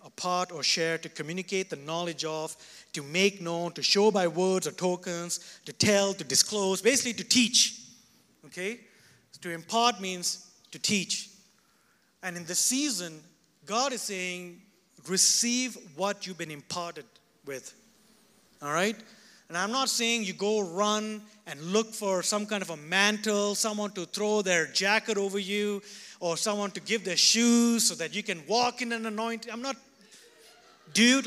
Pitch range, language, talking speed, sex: 175-230 Hz, English, 160 wpm, male